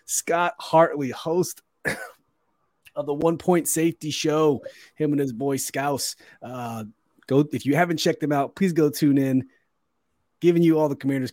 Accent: American